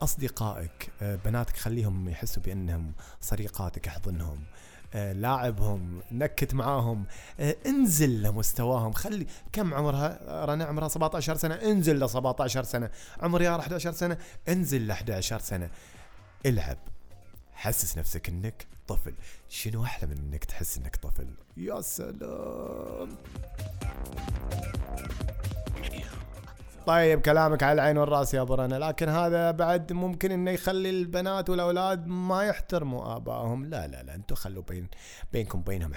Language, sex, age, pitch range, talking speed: Arabic, male, 30-49, 100-150 Hz, 120 wpm